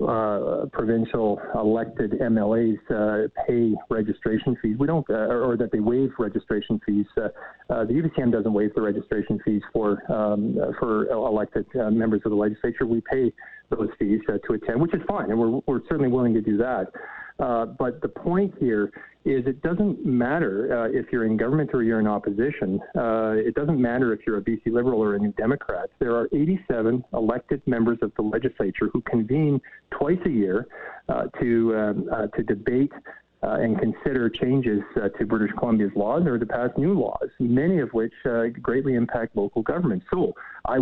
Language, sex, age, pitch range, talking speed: English, male, 40-59, 110-130 Hz, 185 wpm